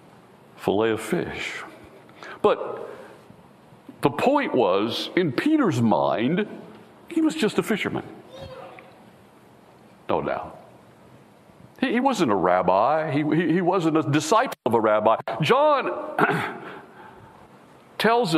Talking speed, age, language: 110 wpm, 60-79, English